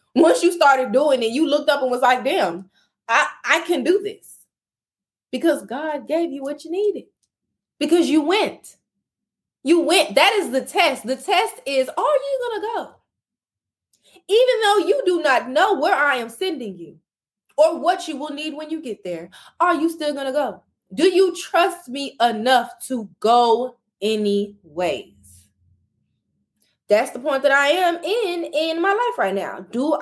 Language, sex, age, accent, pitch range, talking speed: English, female, 20-39, American, 255-340 Hz, 180 wpm